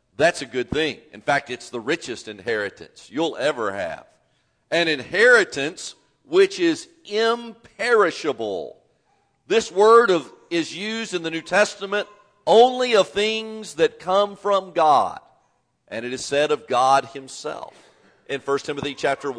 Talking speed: 135 wpm